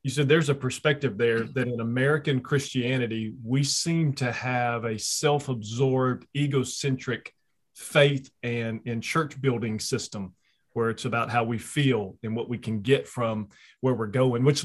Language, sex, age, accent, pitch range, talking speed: English, male, 30-49, American, 120-155 Hz, 160 wpm